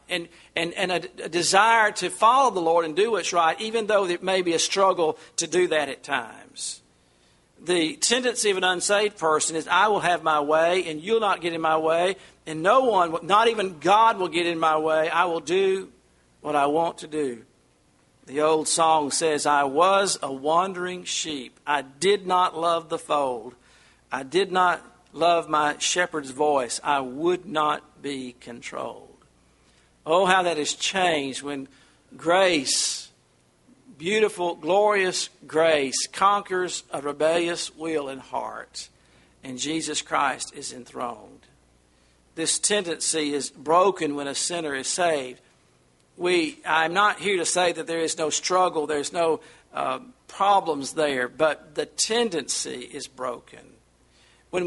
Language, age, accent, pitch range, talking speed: English, 50-69, American, 145-185 Hz, 155 wpm